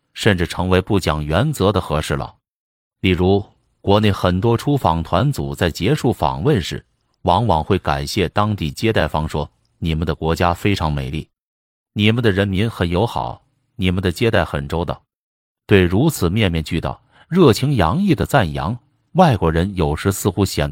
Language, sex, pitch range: Chinese, male, 80-115 Hz